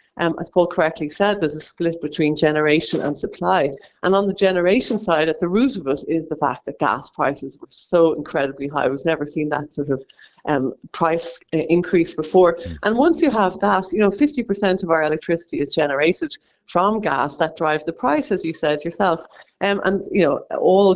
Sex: female